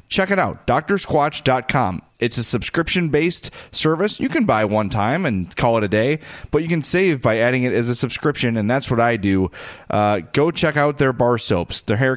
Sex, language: male, English